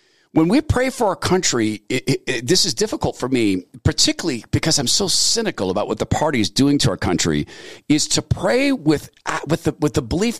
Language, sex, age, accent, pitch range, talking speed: English, male, 50-69, American, 110-165 Hz, 215 wpm